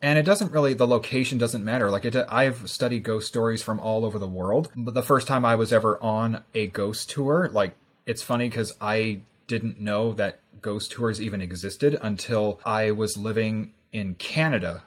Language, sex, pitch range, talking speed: English, male, 105-120 Hz, 190 wpm